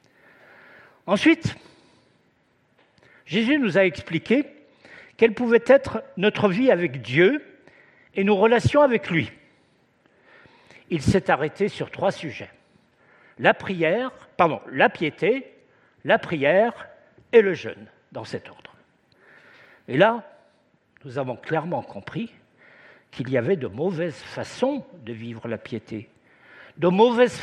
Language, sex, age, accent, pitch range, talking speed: French, male, 60-79, French, 170-265 Hz, 120 wpm